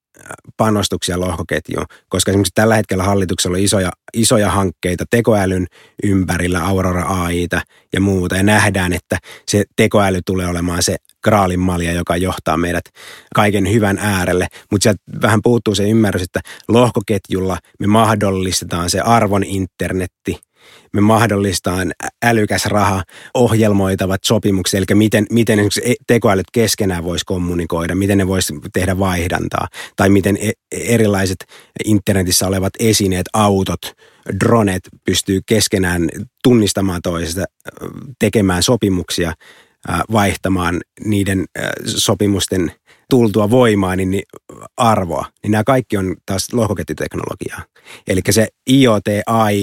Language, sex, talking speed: Finnish, male, 115 wpm